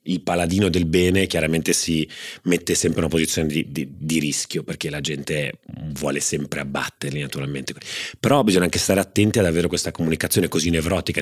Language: Italian